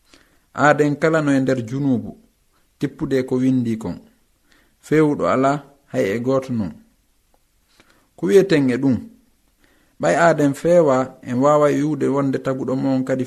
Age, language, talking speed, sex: 50-69, English, 115 wpm, male